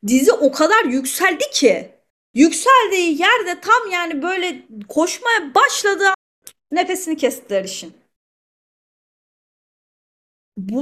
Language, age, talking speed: Turkish, 30-49, 90 wpm